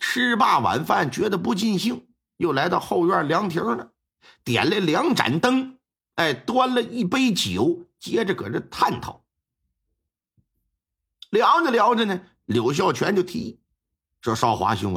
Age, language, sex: 50-69, Chinese, male